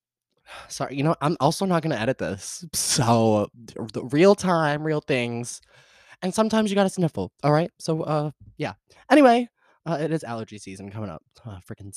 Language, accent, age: English, American, 20-39